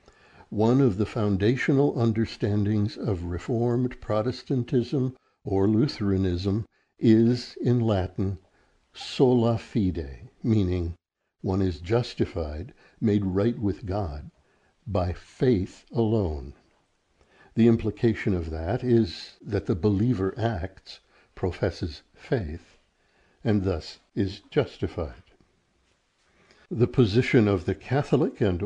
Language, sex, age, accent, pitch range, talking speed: English, male, 60-79, American, 95-125 Hz, 100 wpm